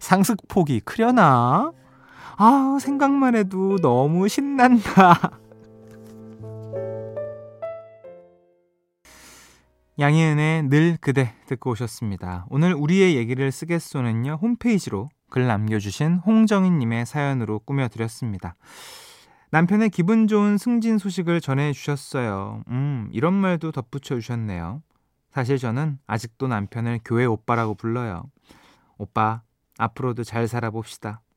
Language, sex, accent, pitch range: Korean, male, native, 115-175 Hz